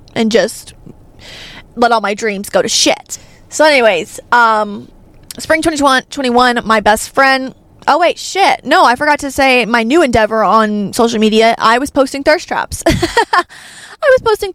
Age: 20-39